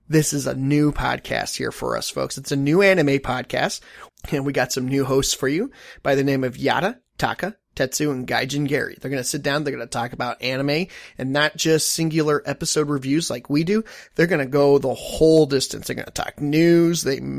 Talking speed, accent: 225 wpm, American